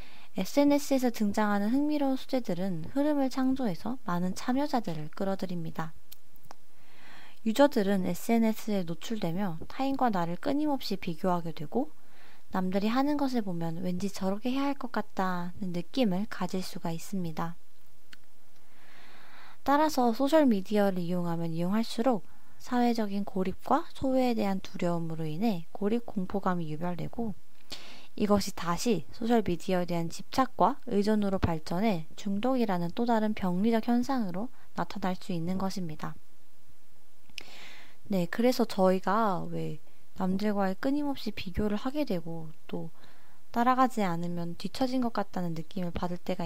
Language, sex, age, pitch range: Korean, female, 20-39, 180-240 Hz